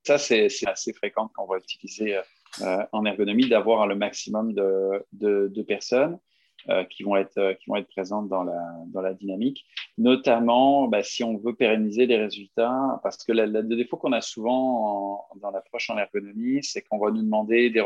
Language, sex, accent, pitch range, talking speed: French, male, French, 105-125 Hz, 205 wpm